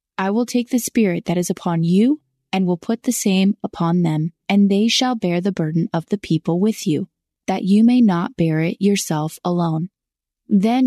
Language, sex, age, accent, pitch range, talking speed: English, female, 20-39, American, 170-225 Hz, 200 wpm